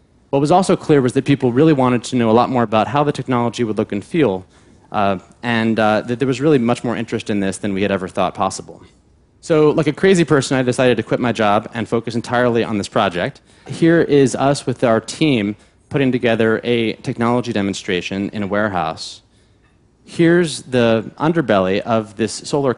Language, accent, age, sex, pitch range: Chinese, American, 30-49, male, 105-130 Hz